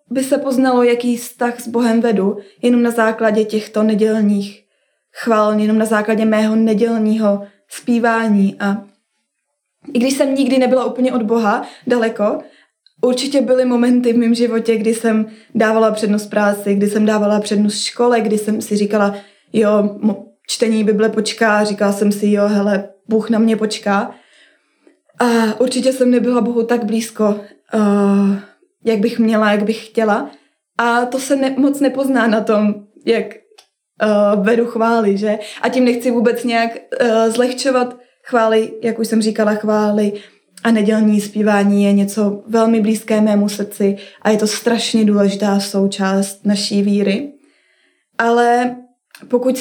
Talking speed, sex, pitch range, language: 145 wpm, female, 210-245 Hz, Czech